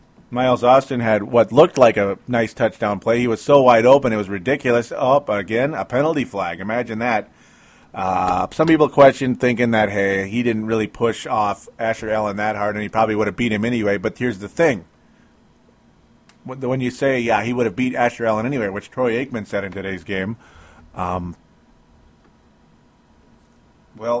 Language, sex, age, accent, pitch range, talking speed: English, male, 40-59, American, 105-130 Hz, 180 wpm